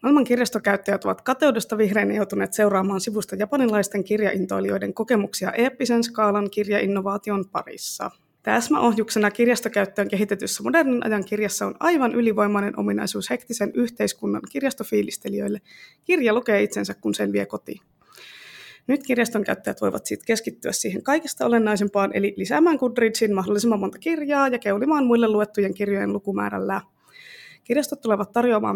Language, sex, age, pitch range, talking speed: Finnish, female, 20-39, 200-245 Hz, 125 wpm